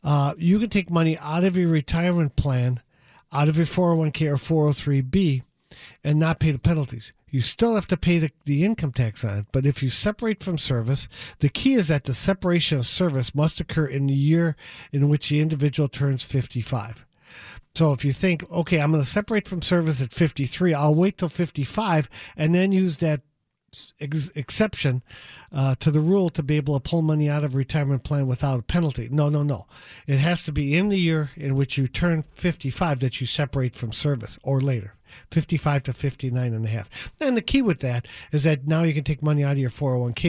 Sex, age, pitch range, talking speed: male, 50-69, 135-165 Hz, 205 wpm